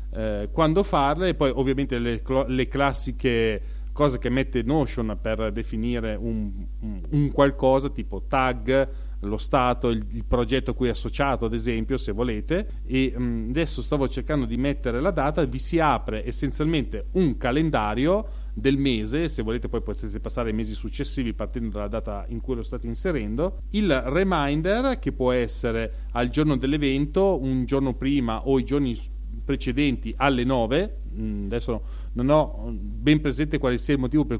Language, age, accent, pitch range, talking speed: Italian, 30-49, native, 115-140 Hz, 155 wpm